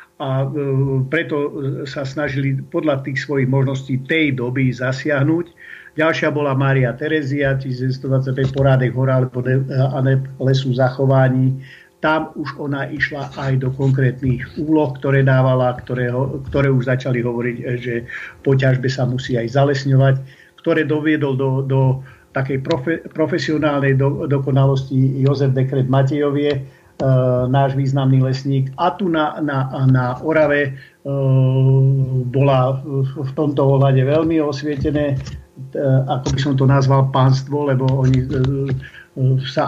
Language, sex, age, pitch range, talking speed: Slovak, male, 50-69, 130-145 Hz, 120 wpm